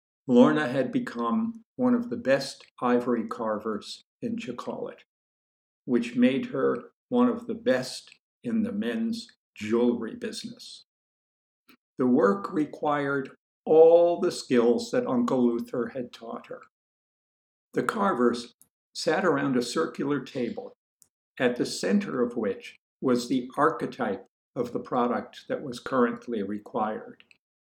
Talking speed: 125 wpm